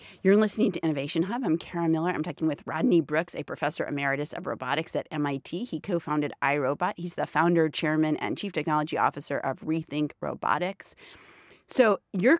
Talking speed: 175 wpm